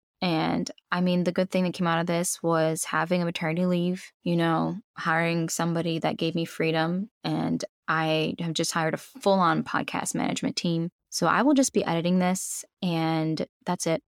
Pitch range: 165-195 Hz